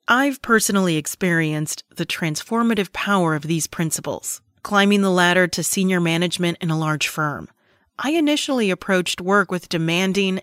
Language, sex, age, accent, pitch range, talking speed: English, female, 30-49, American, 165-210 Hz, 145 wpm